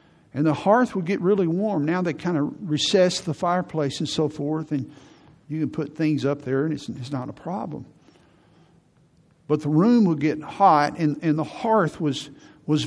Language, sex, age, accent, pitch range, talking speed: English, male, 50-69, American, 145-170 Hz, 195 wpm